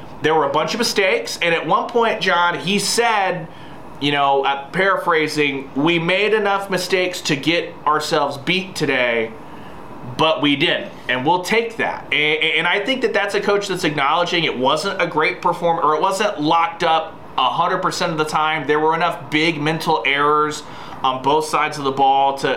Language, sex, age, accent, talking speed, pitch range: English, male, 30-49, American, 185 wpm, 150-190 Hz